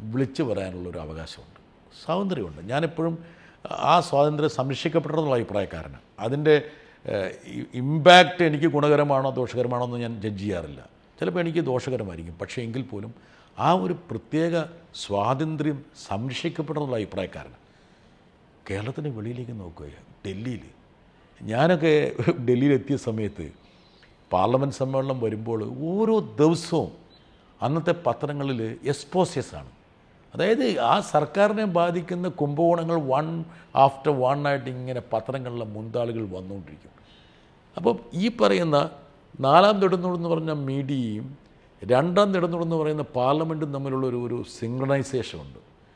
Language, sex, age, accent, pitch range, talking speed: Malayalam, male, 50-69, native, 115-160 Hz, 95 wpm